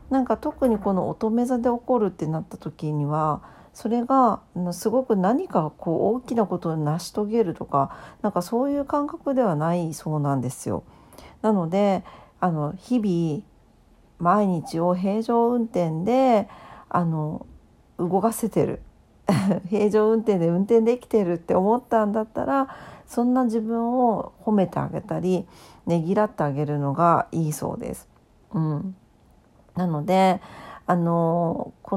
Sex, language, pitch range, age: female, Japanese, 170-230 Hz, 50-69